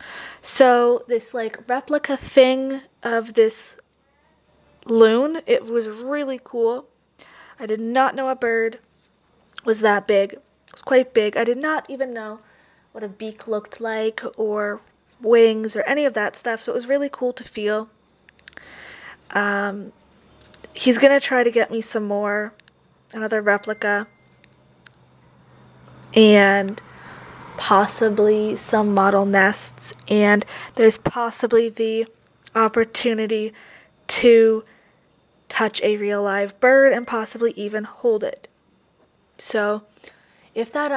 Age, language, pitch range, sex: 20-39, English, 210-240 Hz, female